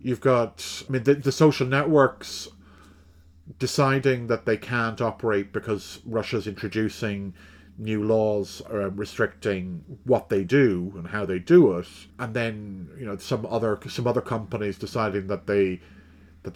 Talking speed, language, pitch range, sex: 150 wpm, English, 95-125 Hz, male